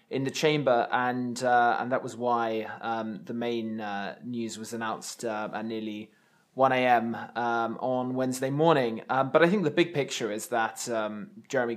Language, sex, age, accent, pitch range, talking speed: English, male, 20-39, British, 110-125 Hz, 185 wpm